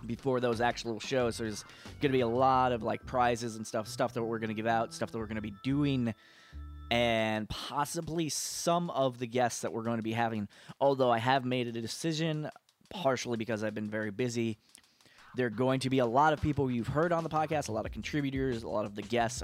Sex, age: male, 20-39